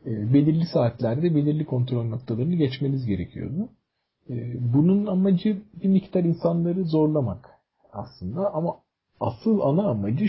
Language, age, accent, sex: Turkish, 40-59, native, male